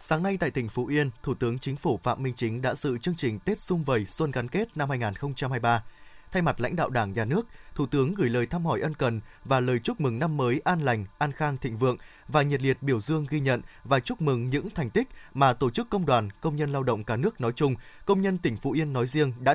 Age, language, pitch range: 20-39, Vietnamese, 130-160 Hz